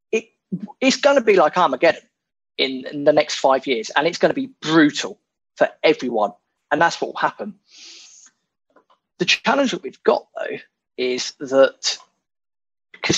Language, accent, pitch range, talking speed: English, British, 135-205 Hz, 155 wpm